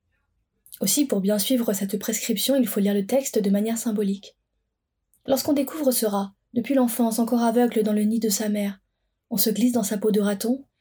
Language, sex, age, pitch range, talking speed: French, female, 20-39, 210-240 Hz, 200 wpm